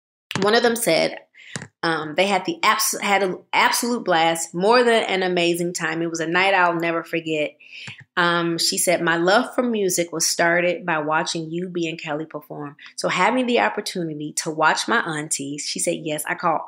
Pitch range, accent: 165-205 Hz, American